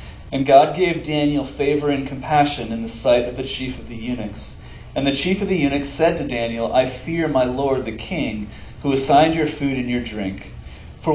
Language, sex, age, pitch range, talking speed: English, male, 40-59, 115-150 Hz, 210 wpm